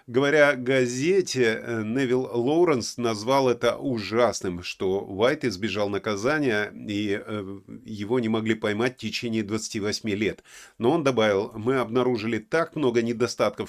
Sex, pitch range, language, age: male, 110-135 Hz, Russian, 30-49